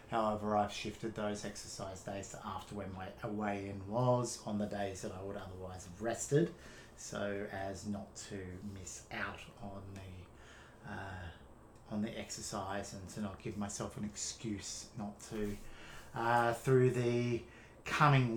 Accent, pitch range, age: Australian, 105-130 Hz, 30-49